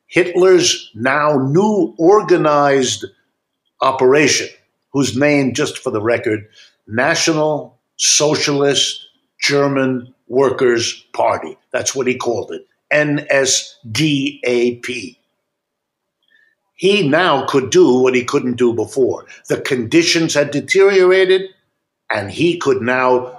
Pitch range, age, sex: 125-165 Hz, 60-79, male